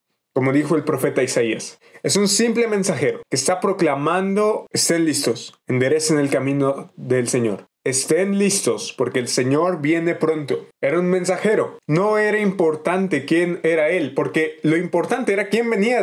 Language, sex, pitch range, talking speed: Spanish, male, 145-190 Hz, 155 wpm